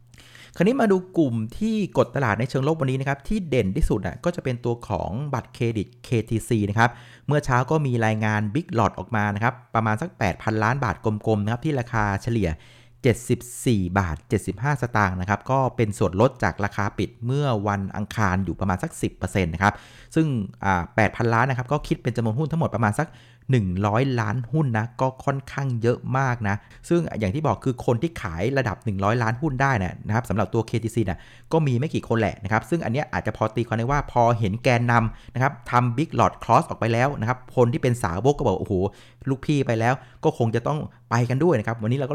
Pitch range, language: 105-135 Hz, Thai